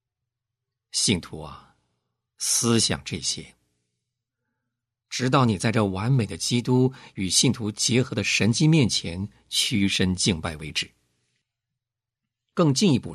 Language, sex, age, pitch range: Chinese, male, 50-69, 90-125 Hz